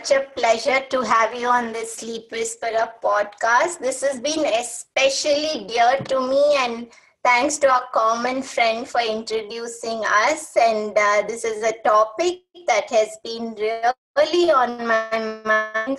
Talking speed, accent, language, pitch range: 145 wpm, Indian, English, 230-280 Hz